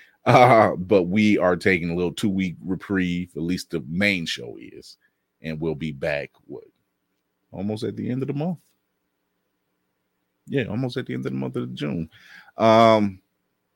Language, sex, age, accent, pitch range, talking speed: English, male, 30-49, American, 80-110 Hz, 170 wpm